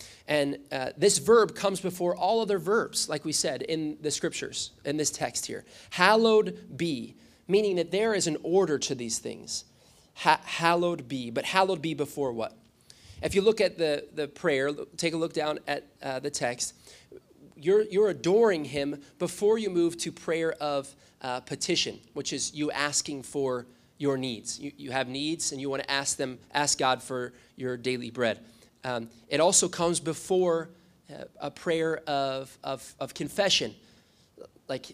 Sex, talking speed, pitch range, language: male, 170 wpm, 135-180 Hz, English